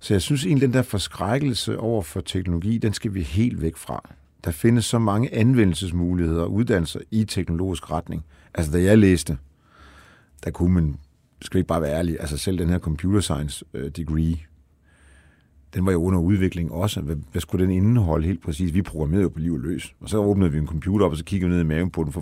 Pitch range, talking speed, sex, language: 80-105 Hz, 220 wpm, male, Danish